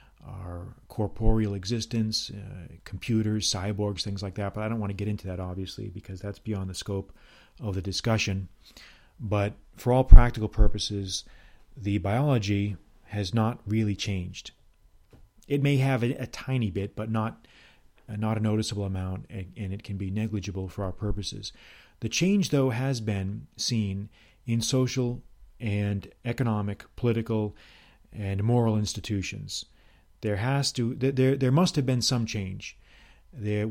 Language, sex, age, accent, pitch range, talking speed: English, male, 40-59, American, 100-110 Hz, 150 wpm